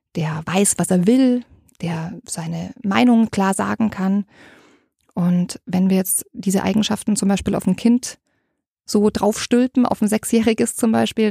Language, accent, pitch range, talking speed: German, German, 185-220 Hz, 155 wpm